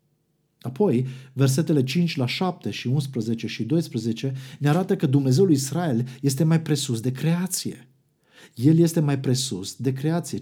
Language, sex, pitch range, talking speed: Romanian, male, 130-165 Hz, 145 wpm